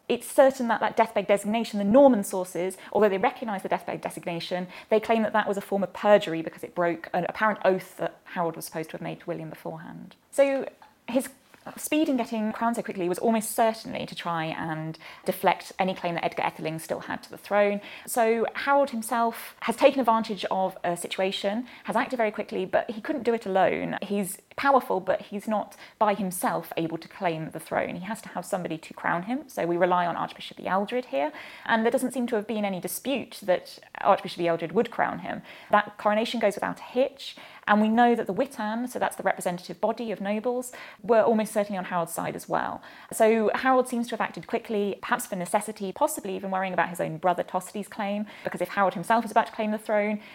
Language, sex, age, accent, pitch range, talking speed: English, female, 20-39, British, 180-230 Hz, 215 wpm